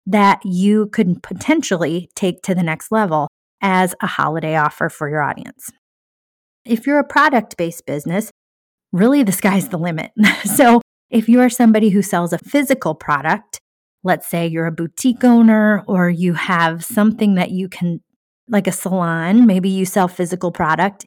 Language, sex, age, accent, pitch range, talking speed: English, female, 30-49, American, 175-215 Hz, 165 wpm